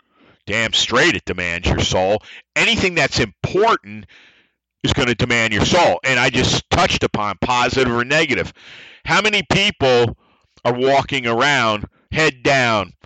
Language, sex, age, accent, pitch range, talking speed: English, male, 50-69, American, 85-130 Hz, 140 wpm